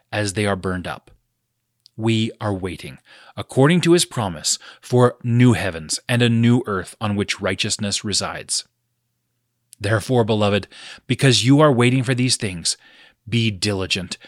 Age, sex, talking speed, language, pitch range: 30-49, male, 145 wpm, English, 100-125 Hz